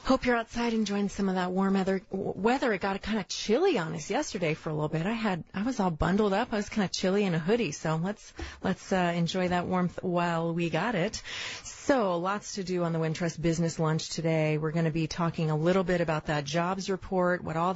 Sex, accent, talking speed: female, American, 245 wpm